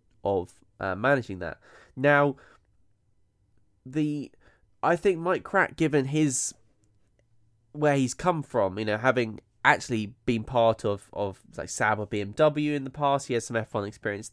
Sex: male